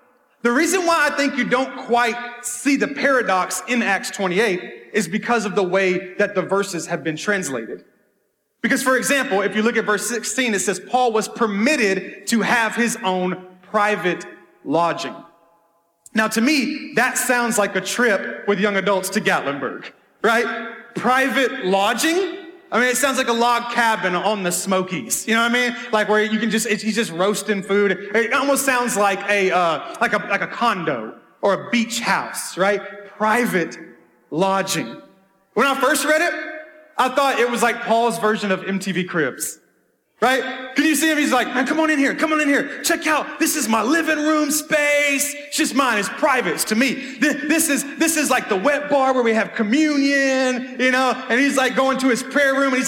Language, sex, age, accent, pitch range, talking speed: English, male, 30-49, American, 210-270 Hz, 200 wpm